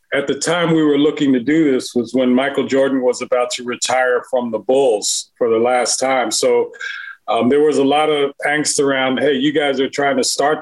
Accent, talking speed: American, 225 wpm